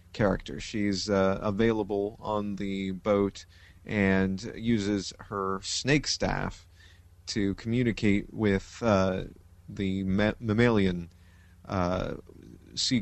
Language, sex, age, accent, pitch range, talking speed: English, male, 30-49, American, 95-110 Hz, 95 wpm